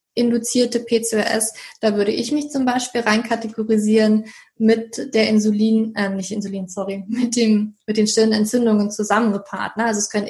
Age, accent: 20-39, German